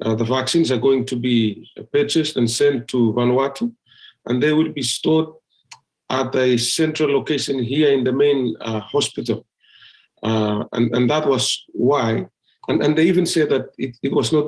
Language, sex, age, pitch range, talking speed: English, male, 50-69, 125-150 Hz, 180 wpm